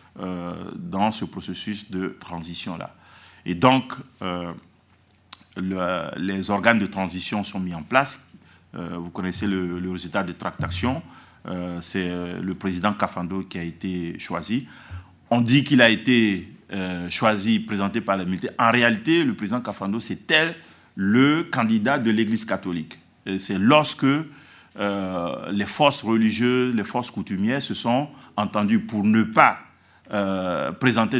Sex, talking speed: male, 145 wpm